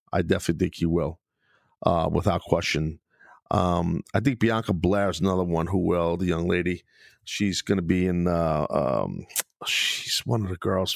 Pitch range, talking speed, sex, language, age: 90-115 Hz, 180 wpm, male, English, 40-59